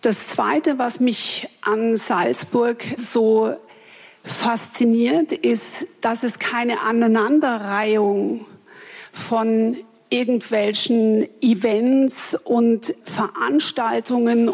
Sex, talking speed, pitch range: female, 75 wpm, 220-265 Hz